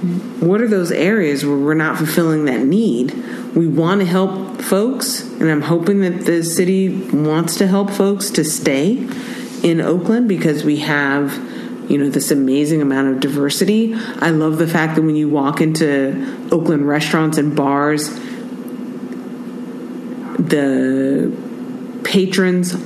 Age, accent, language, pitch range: 40-59, American, English, 150-225 Hz